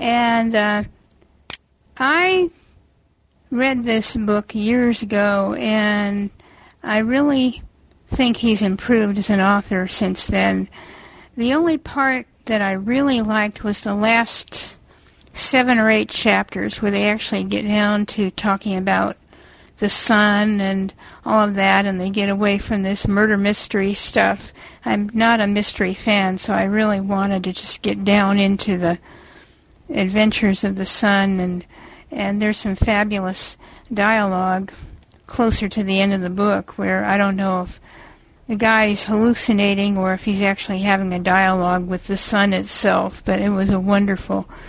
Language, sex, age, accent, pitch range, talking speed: English, female, 50-69, American, 195-215 Hz, 150 wpm